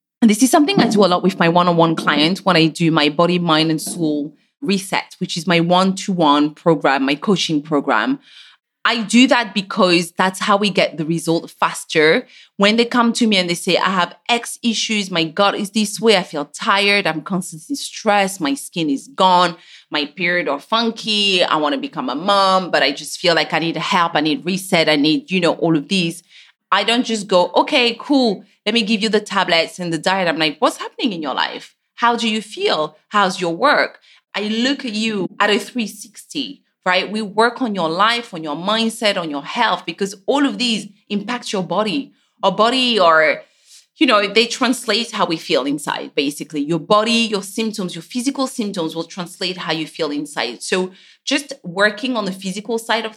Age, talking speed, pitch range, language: 30-49, 205 wpm, 170-225 Hz, English